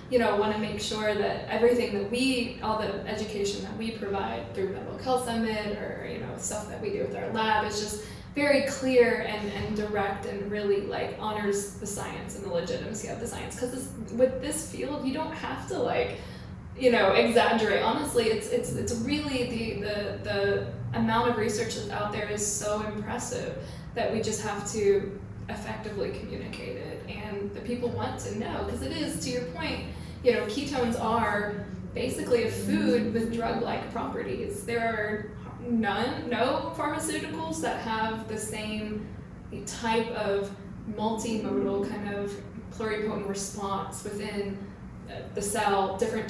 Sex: female